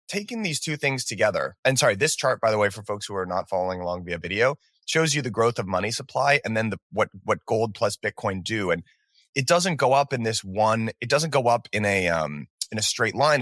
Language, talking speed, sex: English, 250 wpm, male